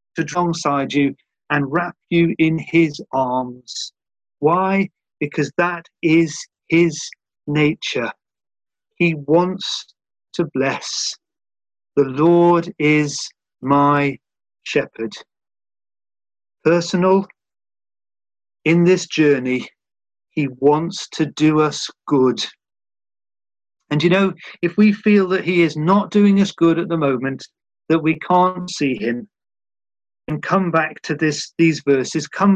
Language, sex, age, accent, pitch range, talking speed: English, male, 40-59, British, 135-175 Hz, 115 wpm